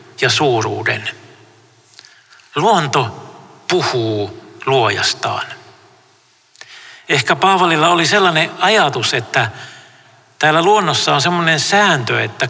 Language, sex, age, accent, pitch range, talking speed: Finnish, male, 60-79, native, 120-155 Hz, 80 wpm